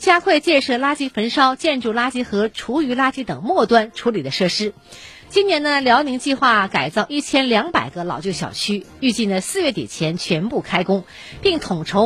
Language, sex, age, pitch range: Chinese, female, 50-69, 190-285 Hz